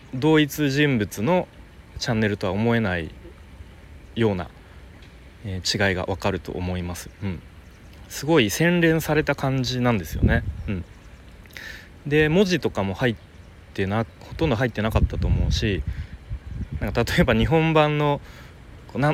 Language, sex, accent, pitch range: Japanese, male, native, 90-140 Hz